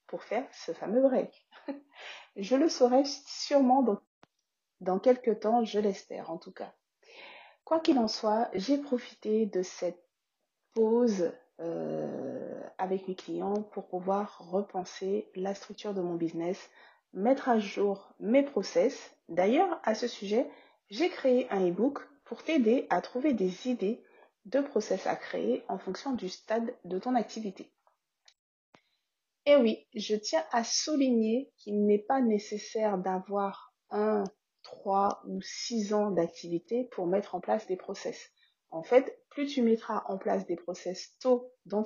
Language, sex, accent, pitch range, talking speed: French, female, French, 185-255 Hz, 150 wpm